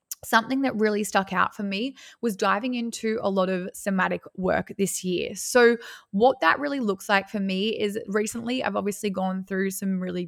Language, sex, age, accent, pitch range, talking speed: English, female, 20-39, Australian, 180-205 Hz, 195 wpm